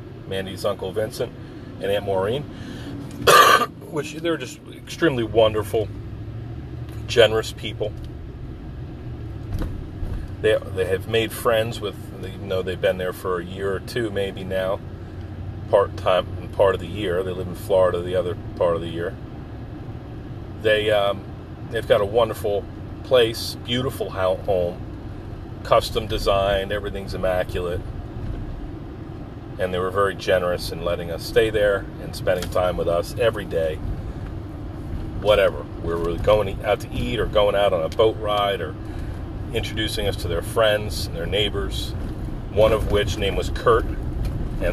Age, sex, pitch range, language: 40-59, male, 95-110 Hz, English